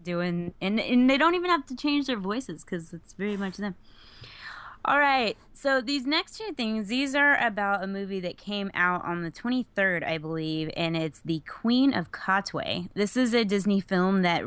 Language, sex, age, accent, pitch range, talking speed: English, female, 20-39, American, 170-225 Hz, 200 wpm